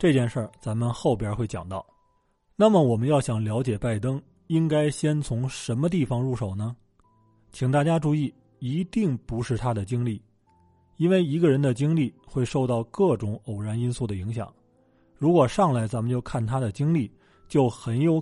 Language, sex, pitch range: Chinese, male, 110-145 Hz